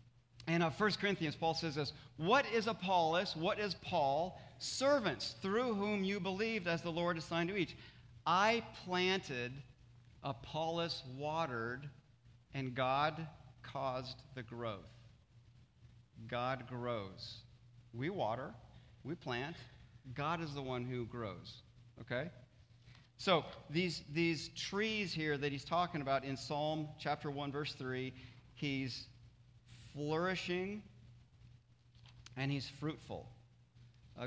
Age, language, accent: 40-59, English, American